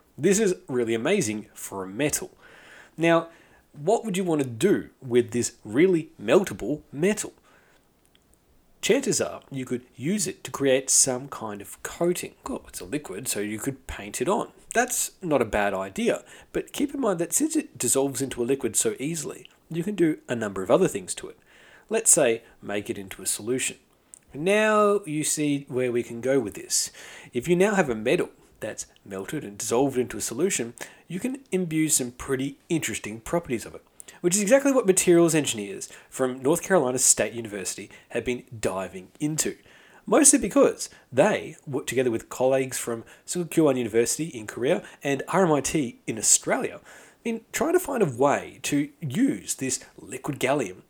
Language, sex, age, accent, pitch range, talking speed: English, male, 40-59, Australian, 120-185 Hz, 175 wpm